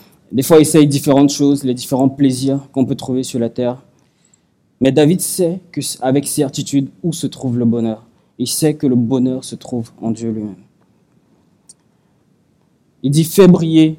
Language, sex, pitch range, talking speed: French, male, 130-155 Hz, 175 wpm